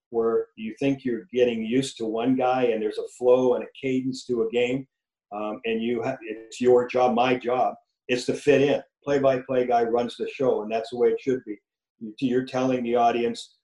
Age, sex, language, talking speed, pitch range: 50-69, male, English, 210 wpm, 120-140 Hz